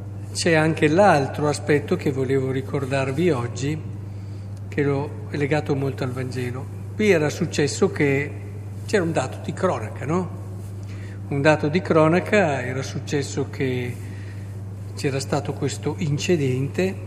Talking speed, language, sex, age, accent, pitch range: 125 wpm, Italian, male, 50-69, native, 100-150 Hz